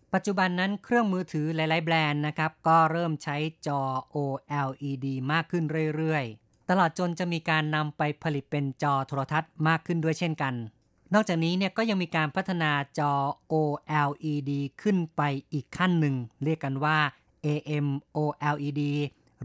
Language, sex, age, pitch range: Thai, female, 20-39, 145-170 Hz